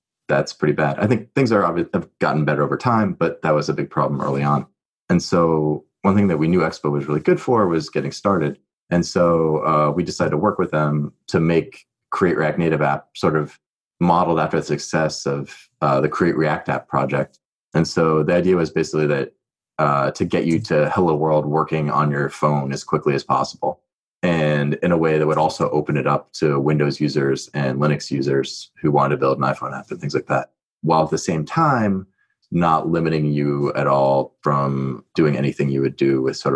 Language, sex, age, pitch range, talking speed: English, male, 30-49, 70-80 Hz, 210 wpm